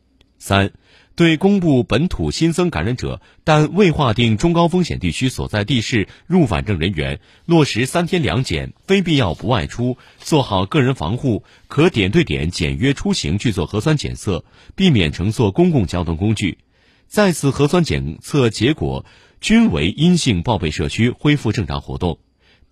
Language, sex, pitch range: Chinese, male, 95-160 Hz